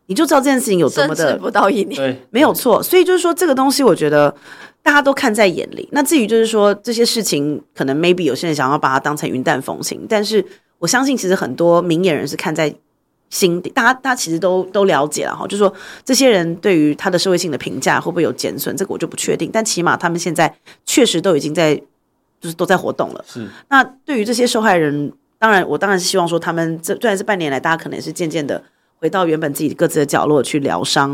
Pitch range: 155-205 Hz